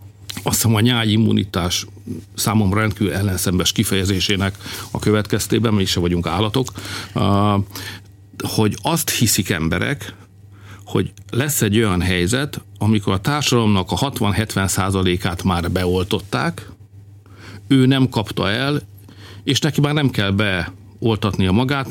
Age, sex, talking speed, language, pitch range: 60-79, male, 115 wpm, Hungarian, 95-115 Hz